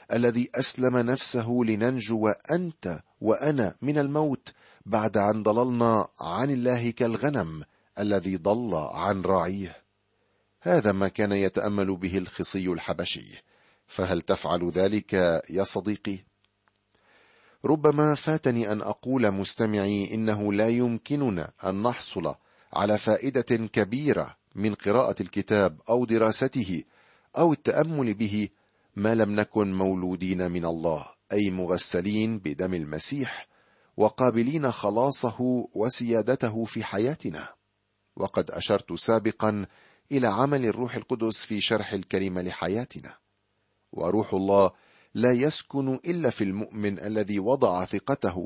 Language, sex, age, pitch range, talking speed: Arabic, male, 40-59, 95-125 Hz, 110 wpm